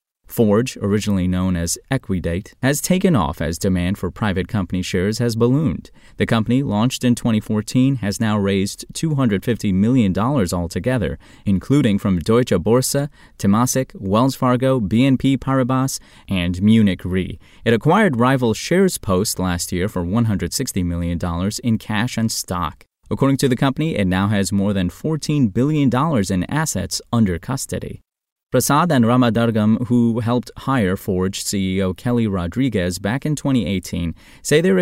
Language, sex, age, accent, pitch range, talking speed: English, male, 30-49, American, 95-130 Hz, 155 wpm